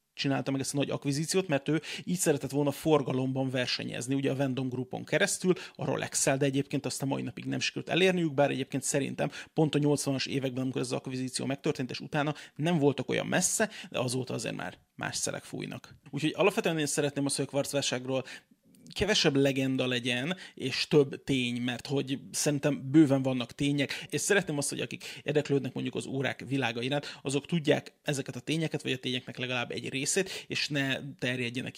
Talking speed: 185 wpm